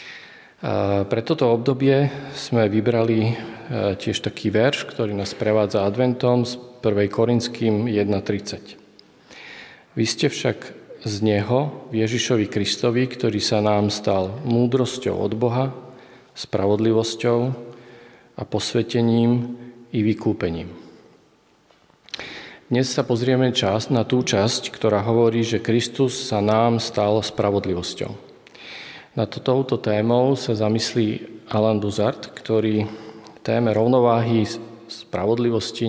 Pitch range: 105-120 Hz